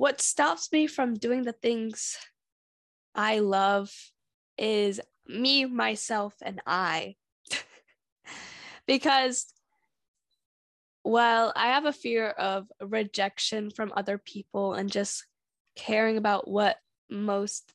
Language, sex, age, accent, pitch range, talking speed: English, female, 10-29, American, 195-240 Hz, 105 wpm